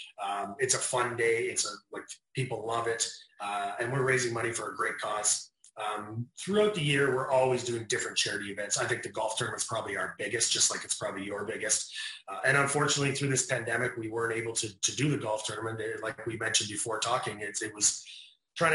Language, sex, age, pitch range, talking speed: English, male, 30-49, 110-140 Hz, 220 wpm